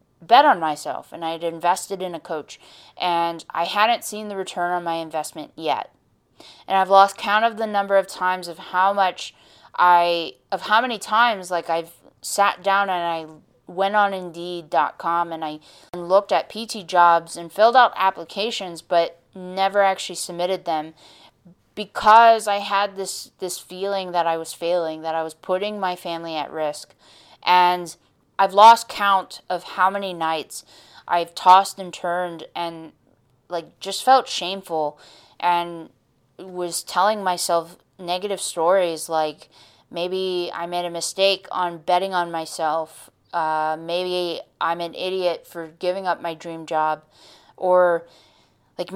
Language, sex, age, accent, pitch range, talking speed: English, female, 20-39, American, 170-195 Hz, 155 wpm